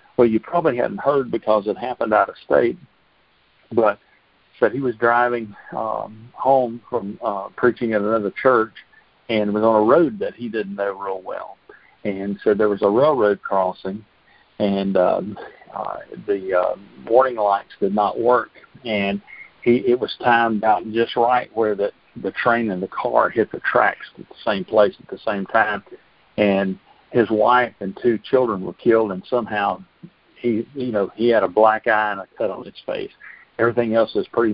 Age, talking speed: 50-69, 185 wpm